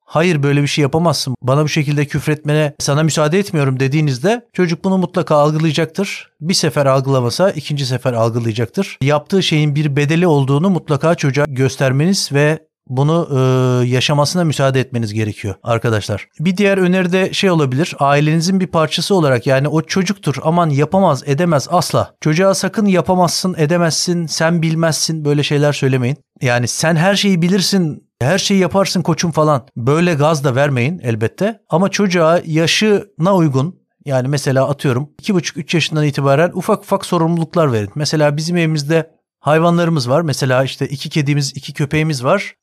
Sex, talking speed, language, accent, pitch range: male, 150 wpm, Turkish, native, 140-175 Hz